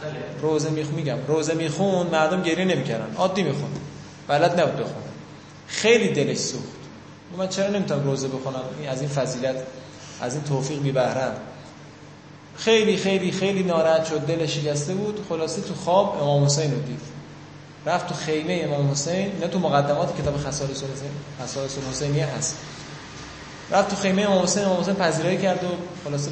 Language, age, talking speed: Persian, 20-39, 155 wpm